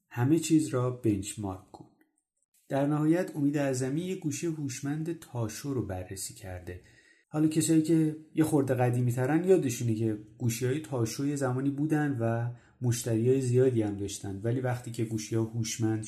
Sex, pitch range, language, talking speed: male, 115-155 Hz, Persian, 165 wpm